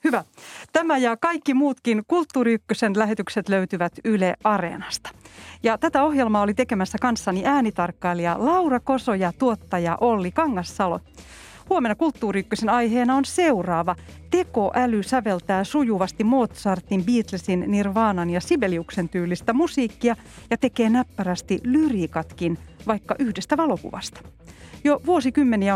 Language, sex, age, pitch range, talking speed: Finnish, female, 40-59, 185-255 Hz, 110 wpm